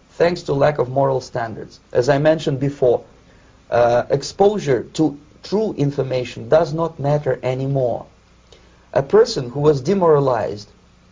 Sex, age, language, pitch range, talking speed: male, 40-59, English, 125-170 Hz, 130 wpm